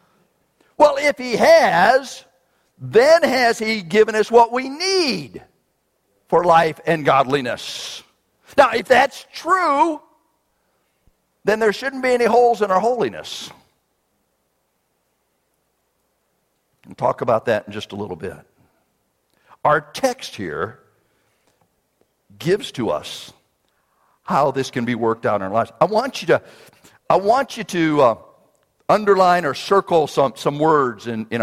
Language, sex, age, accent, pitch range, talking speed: English, male, 50-69, American, 155-250 Hz, 135 wpm